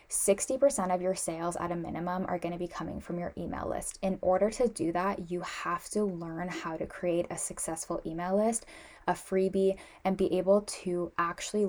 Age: 10-29